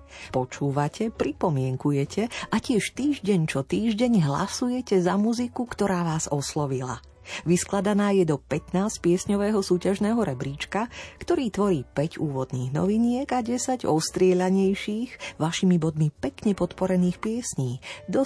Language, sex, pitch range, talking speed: Slovak, female, 150-205 Hz, 110 wpm